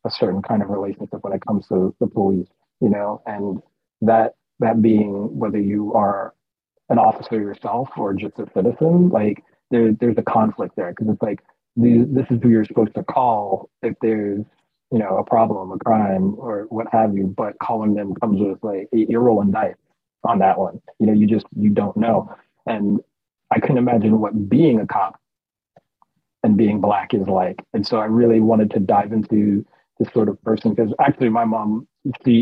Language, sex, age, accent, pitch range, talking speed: English, male, 30-49, American, 100-115 Hz, 195 wpm